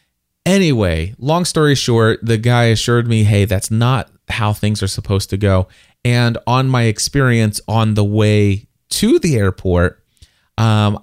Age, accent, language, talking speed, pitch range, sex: 30-49, American, English, 150 wpm, 105-130 Hz, male